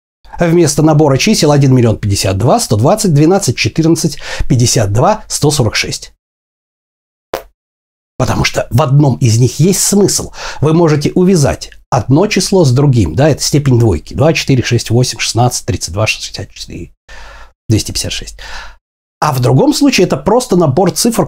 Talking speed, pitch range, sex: 125 wpm, 115-170 Hz, male